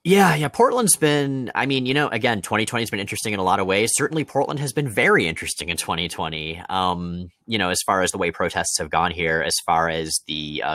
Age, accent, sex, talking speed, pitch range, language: 30-49, American, male, 240 wpm, 85-125 Hz, English